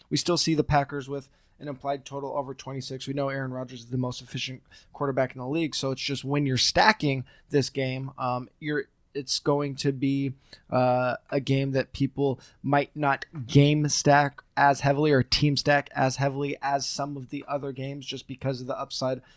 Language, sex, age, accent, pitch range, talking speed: English, male, 20-39, American, 130-145 Hz, 200 wpm